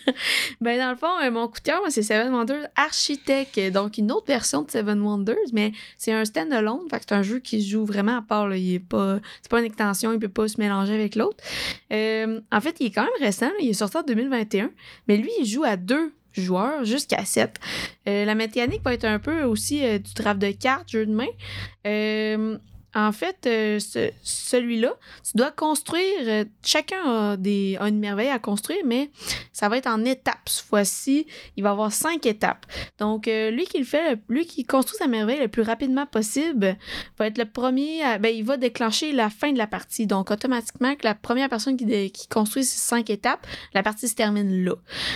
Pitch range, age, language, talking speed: 210-260 Hz, 20-39, French, 220 wpm